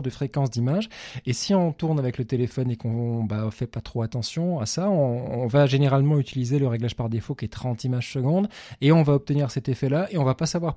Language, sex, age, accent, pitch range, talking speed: French, male, 20-39, French, 120-165 Hz, 255 wpm